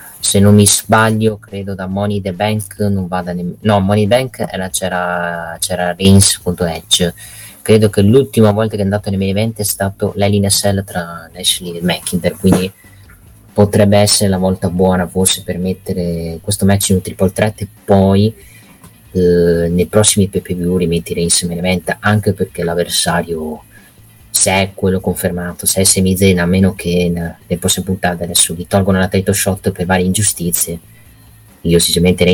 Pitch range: 90-105 Hz